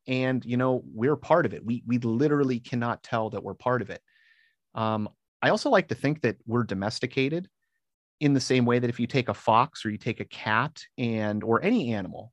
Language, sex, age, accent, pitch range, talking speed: English, male, 30-49, American, 110-145 Hz, 220 wpm